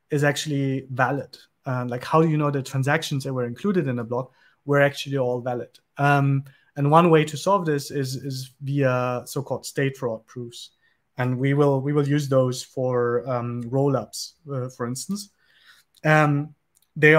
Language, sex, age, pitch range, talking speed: English, male, 30-49, 130-150 Hz, 175 wpm